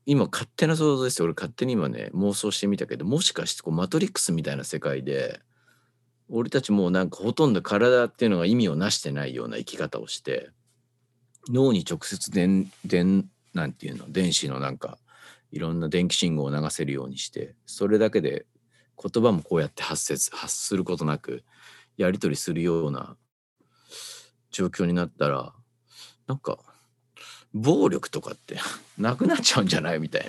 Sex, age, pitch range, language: male, 50-69, 90-130 Hz, Japanese